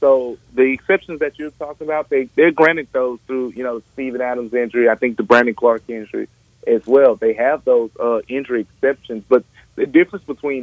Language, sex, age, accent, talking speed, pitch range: English, male, 30-49, American, 205 wpm, 120-155 Hz